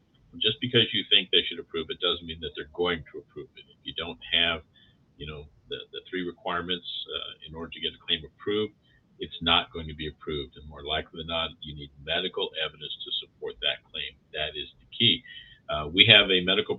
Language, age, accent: English, 50-69, American